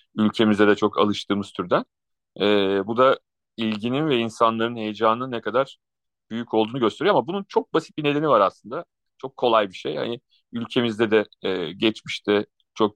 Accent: native